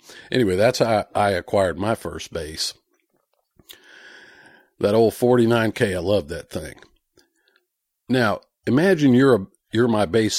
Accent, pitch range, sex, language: American, 90-110 Hz, male, English